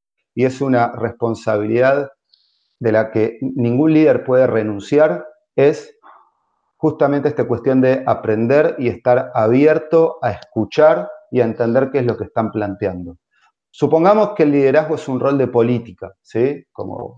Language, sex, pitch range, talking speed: Spanish, male, 115-150 Hz, 145 wpm